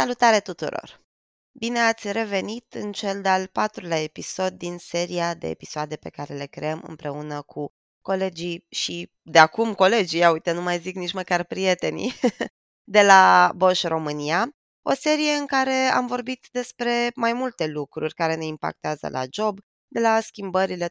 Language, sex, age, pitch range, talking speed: Romanian, female, 20-39, 165-220 Hz, 160 wpm